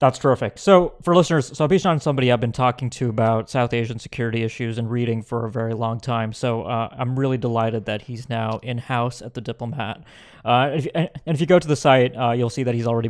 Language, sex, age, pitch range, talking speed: English, male, 20-39, 115-135 Hz, 230 wpm